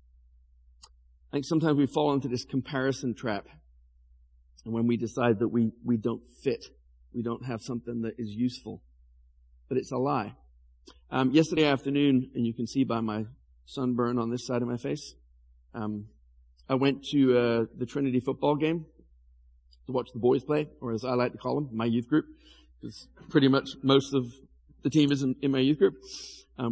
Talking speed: 185 wpm